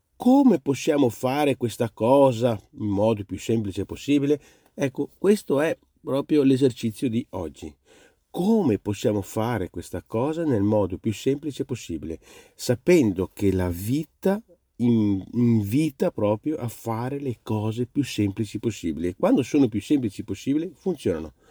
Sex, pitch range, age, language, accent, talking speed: male, 110-150 Hz, 40-59, Italian, native, 130 wpm